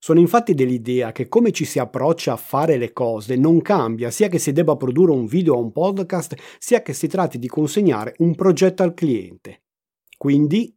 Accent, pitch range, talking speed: native, 130-185 Hz, 195 wpm